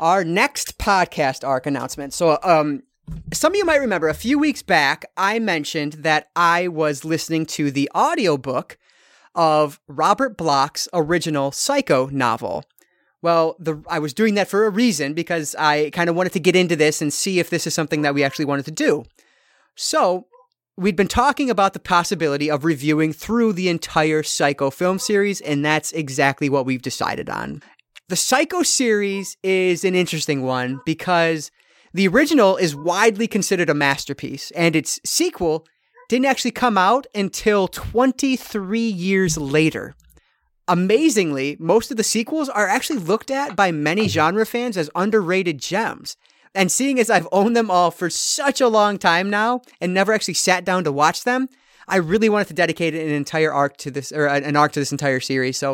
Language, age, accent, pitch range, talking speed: English, 30-49, American, 150-215 Hz, 175 wpm